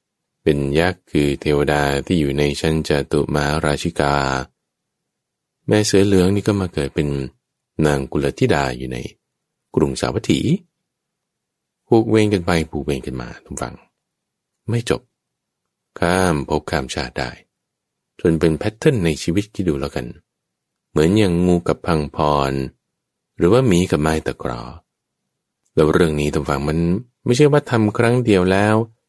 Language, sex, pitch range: English, male, 70-105 Hz